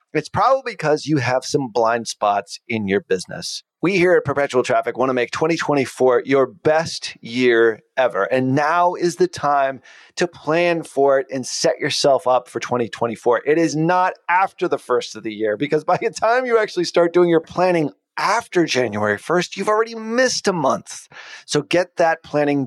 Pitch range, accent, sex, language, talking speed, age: 125-180 Hz, American, male, English, 185 wpm, 30-49